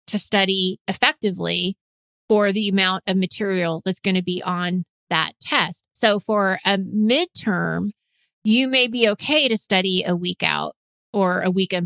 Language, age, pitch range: English, 30-49, 190-225 Hz